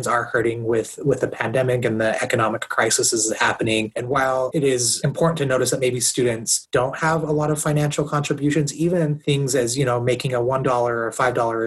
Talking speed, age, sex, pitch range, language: 200 wpm, 30-49, male, 120-140 Hz, English